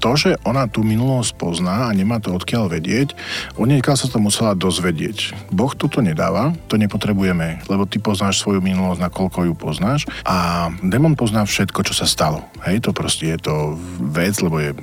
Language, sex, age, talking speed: Slovak, male, 40-59, 180 wpm